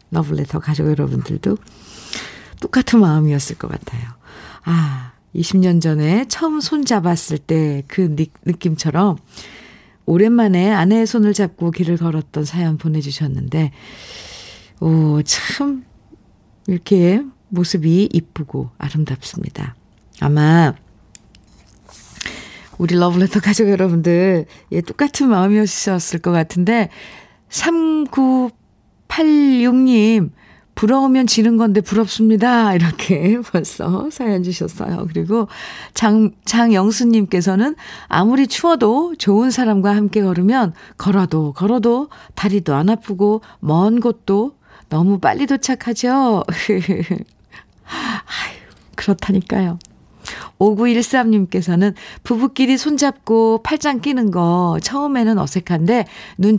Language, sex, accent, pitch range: Korean, female, native, 170-235 Hz